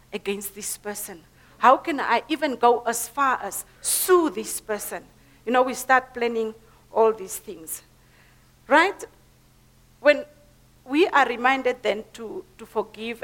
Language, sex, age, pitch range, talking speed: English, female, 50-69, 215-270 Hz, 140 wpm